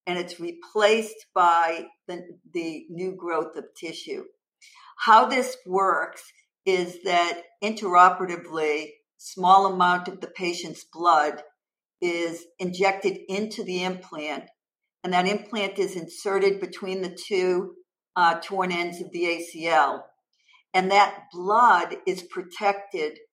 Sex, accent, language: female, American, English